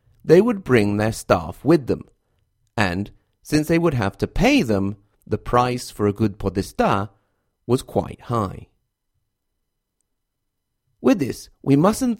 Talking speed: 140 wpm